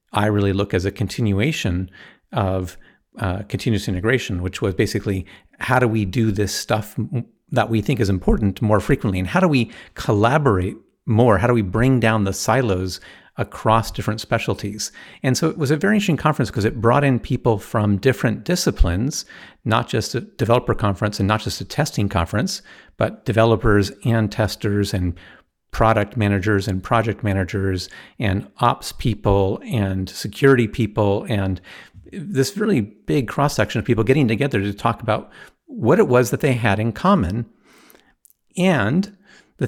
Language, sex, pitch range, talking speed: English, male, 100-125 Hz, 160 wpm